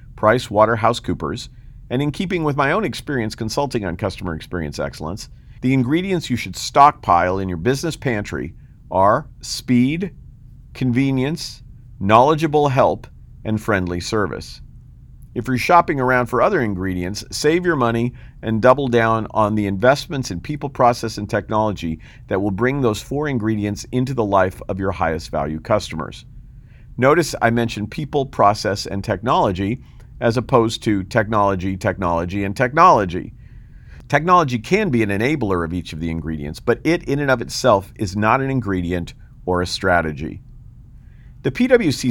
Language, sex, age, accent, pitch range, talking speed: English, male, 50-69, American, 100-130 Hz, 150 wpm